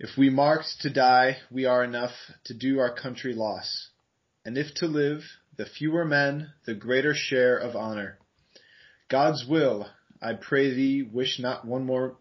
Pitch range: 115-135 Hz